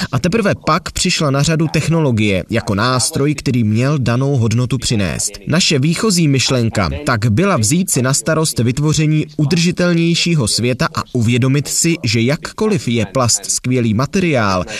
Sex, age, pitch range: male, 20-39, 120-165 Hz